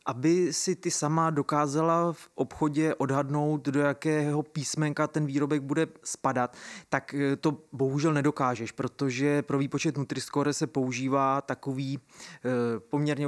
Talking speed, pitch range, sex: 120 wpm, 130-150 Hz, male